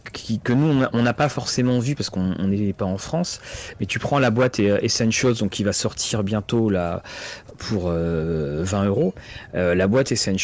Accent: French